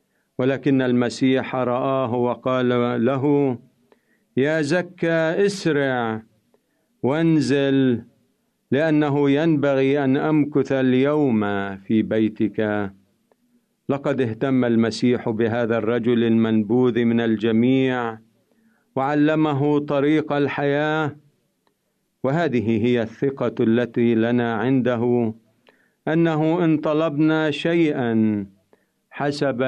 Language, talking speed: Arabic, 75 wpm